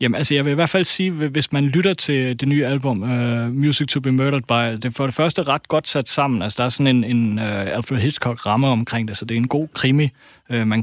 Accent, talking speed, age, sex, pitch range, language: native, 270 wpm, 30-49, male, 125-155 Hz, Danish